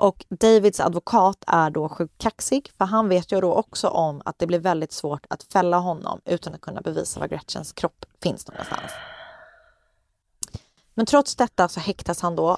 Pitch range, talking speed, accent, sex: 165-200 Hz, 175 wpm, native, female